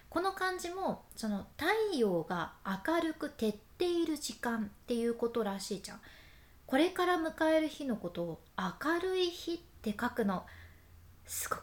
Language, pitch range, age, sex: Japanese, 200-300 Hz, 20-39, female